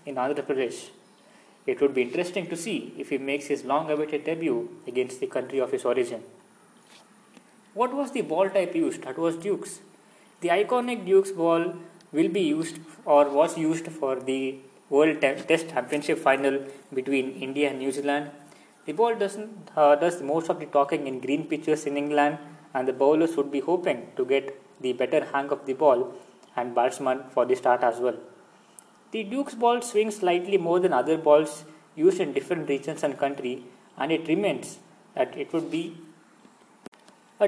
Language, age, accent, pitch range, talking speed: English, 20-39, Indian, 140-200 Hz, 170 wpm